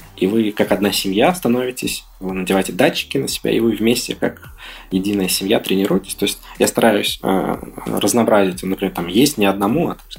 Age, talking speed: 20-39, 185 wpm